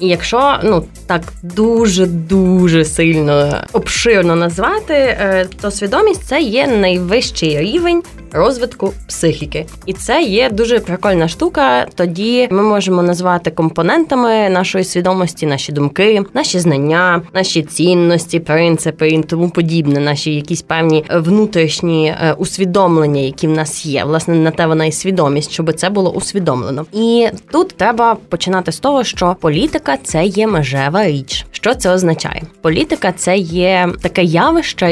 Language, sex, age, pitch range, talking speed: Ukrainian, female, 20-39, 165-210 Hz, 135 wpm